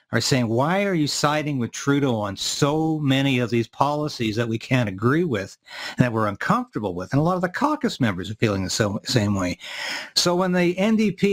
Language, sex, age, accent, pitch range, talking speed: English, male, 60-79, American, 130-165 Hz, 210 wpm